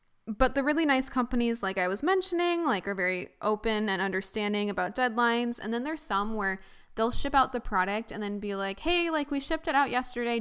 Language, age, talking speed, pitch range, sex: English, 10-29, 220 wpm, 195-245 Hz, female